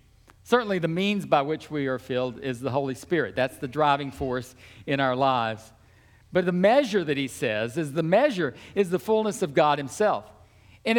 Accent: American